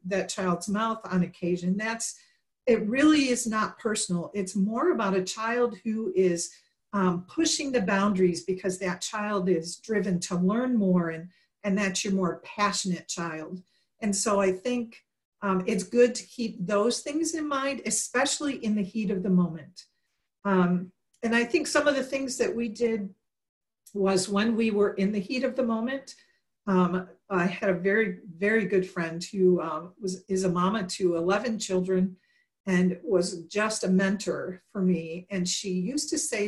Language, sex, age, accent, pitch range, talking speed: English, female, 50-69, American, 180-225 Hz, 175 wpm